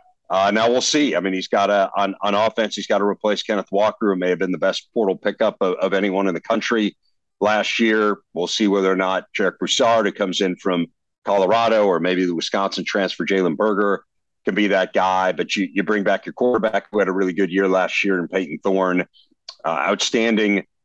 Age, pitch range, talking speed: 50-69, 95-135 Hz, 220 wpm